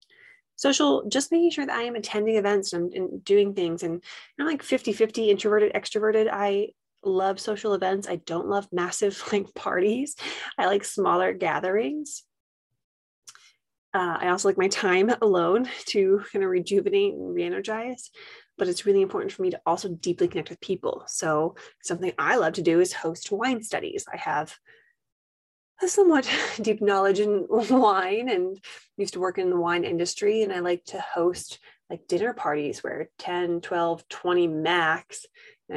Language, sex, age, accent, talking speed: English, female, 20-39, American, 165 wpm